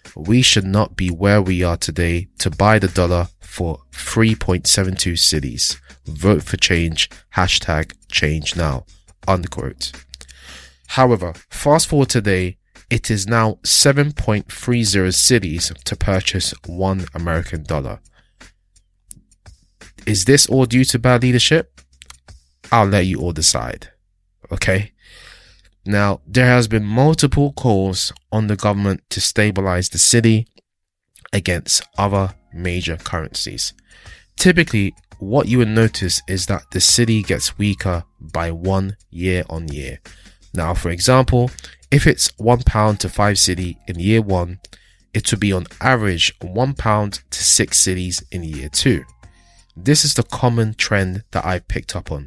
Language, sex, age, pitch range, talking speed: English, male, 20-39, 85-110 Hz, 135 wpm